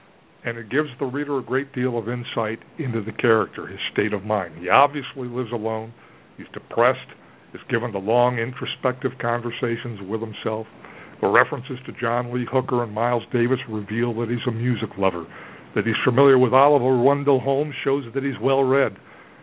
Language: English